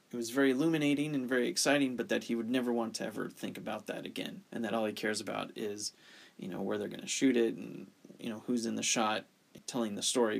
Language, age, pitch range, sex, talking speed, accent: English, 20-39, 110-135 Hz, male, 255 wpm, American